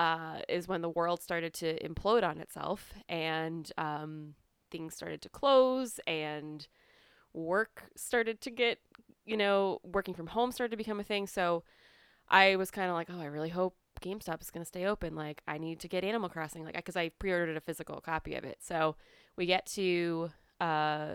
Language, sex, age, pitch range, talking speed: English, female, 20-39, 160-195 Hz, 195 wpm